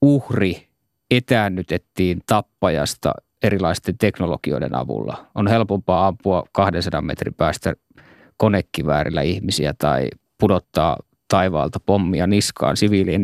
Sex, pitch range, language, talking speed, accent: male, 90-110 Hz, Finnish, 90 wpm, native